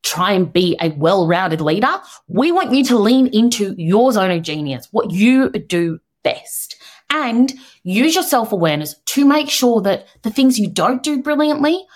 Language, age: English, 20-39